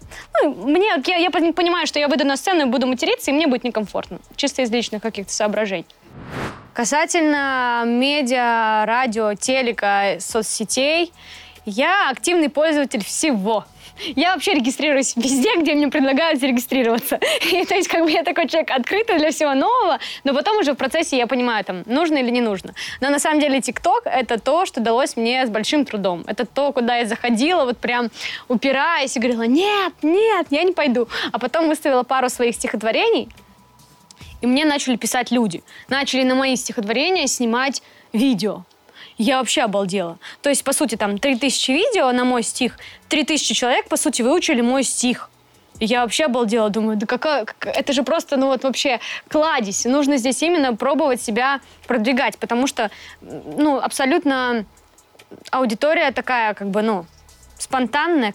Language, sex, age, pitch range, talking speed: Russian, female, 20-39, 235-300 Hz, 160 wpm